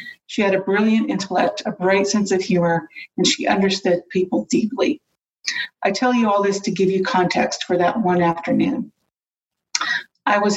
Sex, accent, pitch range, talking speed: female, American, 180-215 Hz, 170 wpm